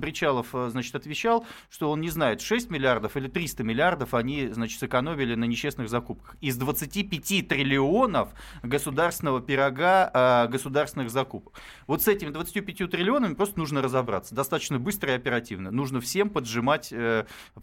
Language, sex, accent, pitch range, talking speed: Russian, male, native, 130-185 Hz, 135 wpm